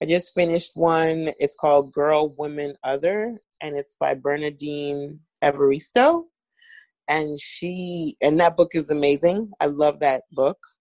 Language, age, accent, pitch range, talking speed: English, 30-49, American, 140-165 Hz, 140 wpm